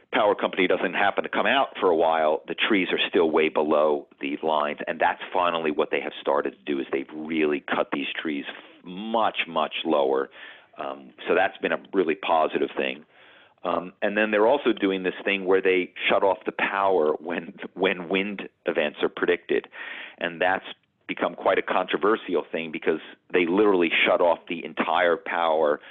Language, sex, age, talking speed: English, male, 40-59, 185 wpm